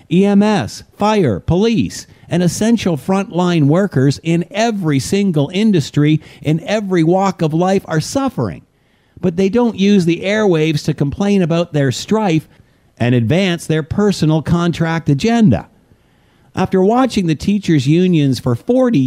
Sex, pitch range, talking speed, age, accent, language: male, 135-195 Hz, 130 wpm, 50-69, American, English